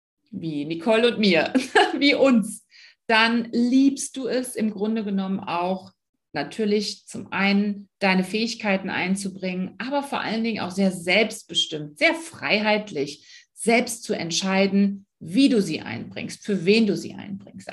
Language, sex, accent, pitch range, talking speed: German, female, German, 190-240 Hz, 140 wpm